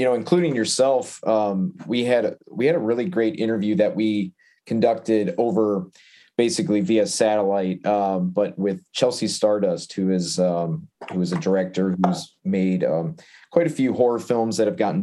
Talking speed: 175 wpm